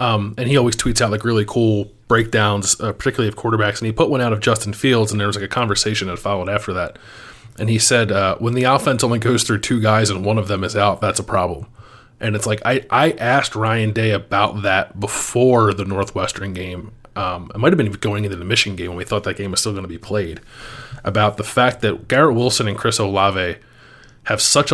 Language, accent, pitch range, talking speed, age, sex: English, American, 100-125 Hz, 240 wpm, 20-39, male